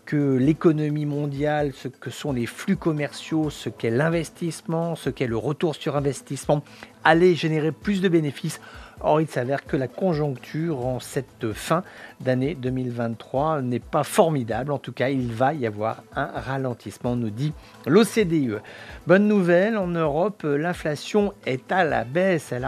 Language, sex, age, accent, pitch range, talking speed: English, male, 50-69, French, 125-160 Hz, 155 wpm